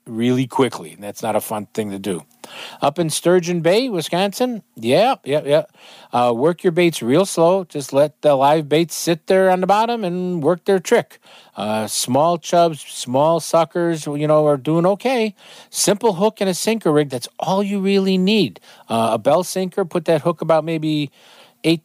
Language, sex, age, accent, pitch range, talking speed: English, male, 50-69, American, 125-180 Hz, 185 wpm